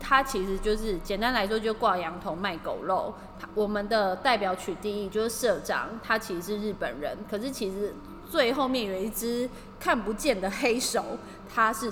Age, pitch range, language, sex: 20-39, 190-235 Hz, Chinese, female